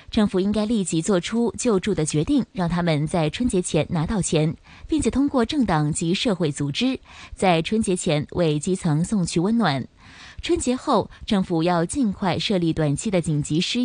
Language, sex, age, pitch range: Chinese, female, 20-39, 160-230 Hz